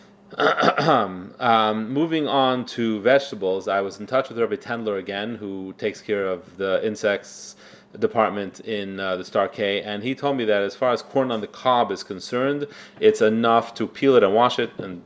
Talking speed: 190 wpm